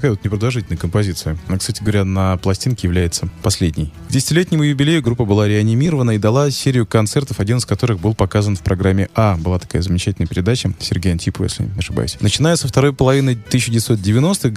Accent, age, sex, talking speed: native, 20-39, male, 175 wpm